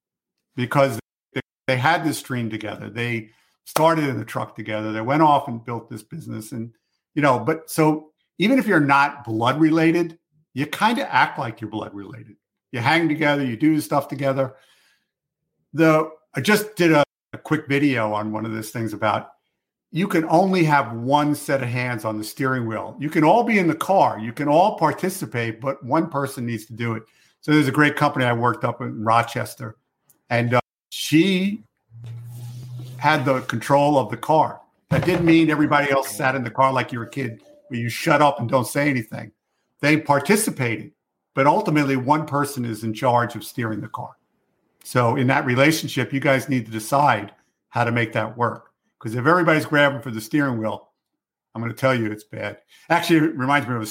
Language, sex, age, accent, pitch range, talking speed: English, male, 50-69, American, 115-155 Hz, 195 wpm